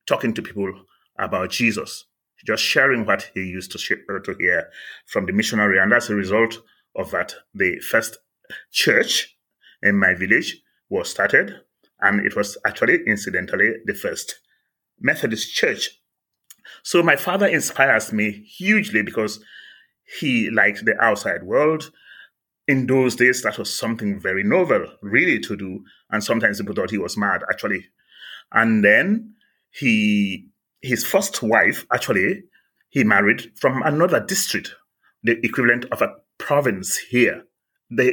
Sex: male